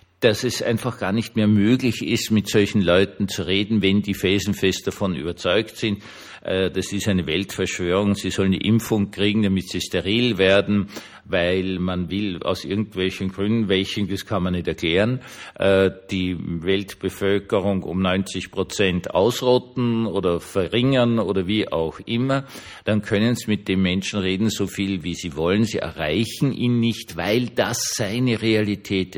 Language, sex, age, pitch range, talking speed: German, male, 50-69, 95-115 Hz, 160 wpm